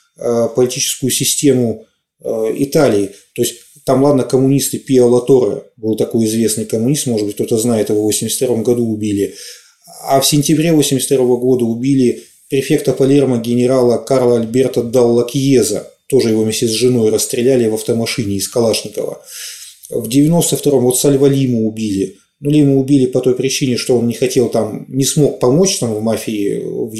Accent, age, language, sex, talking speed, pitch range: native, 30-49, Russian, male, 155 wpm, 120-140 Hz